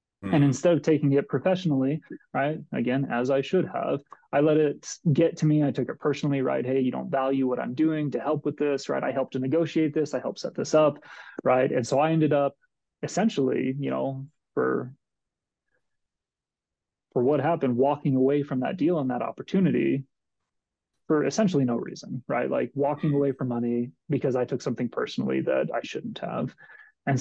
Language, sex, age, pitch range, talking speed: English, male, 30-49, 135-155 Hz, 190 wpm